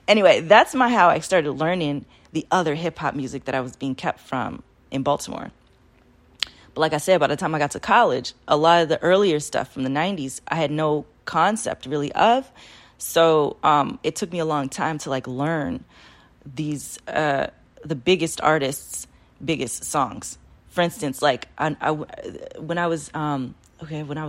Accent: American